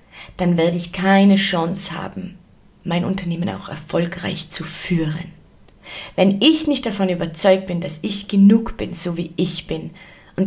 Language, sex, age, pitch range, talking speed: German, female, 30-49, 165-195 Hz, 155 wpm